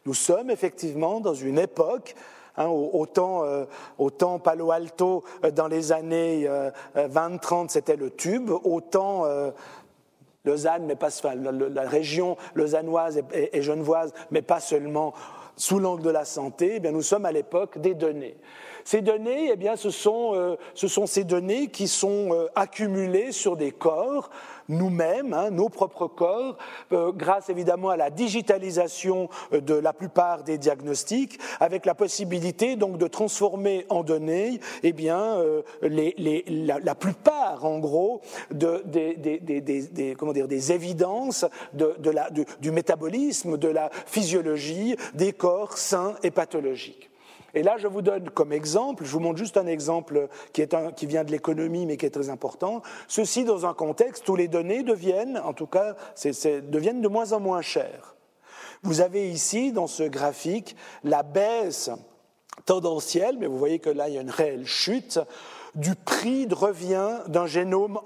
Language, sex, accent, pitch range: French, male, French, 155-200 Hz